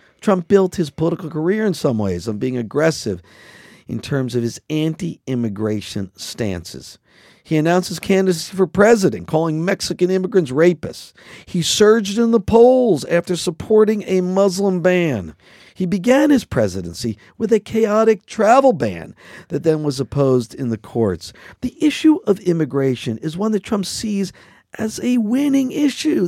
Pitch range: 125-200 Hz